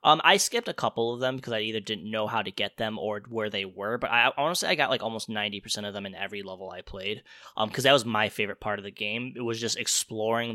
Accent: American